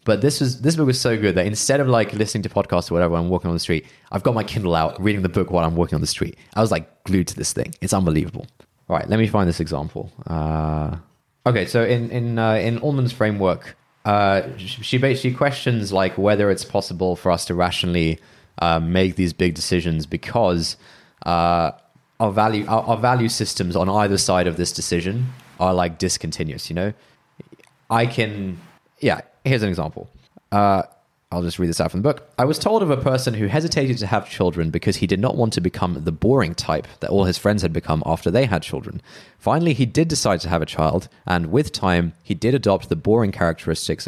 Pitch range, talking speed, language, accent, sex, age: 85-115 Hz, 220 wpm, English, British, male, 20-39